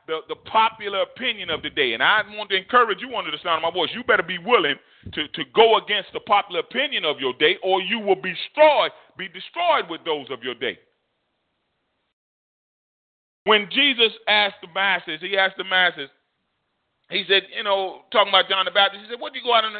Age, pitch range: 30-49, 185-220 Hz